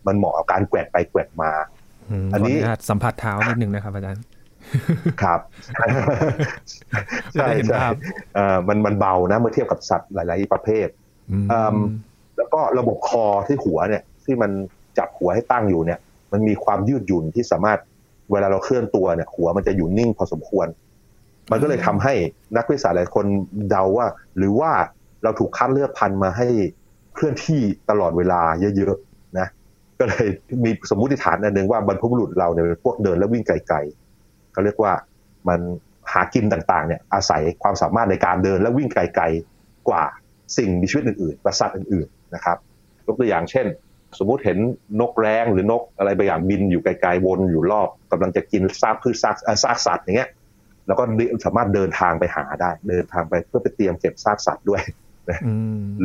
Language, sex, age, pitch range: Thai, male, 30-49, 95-115 Hz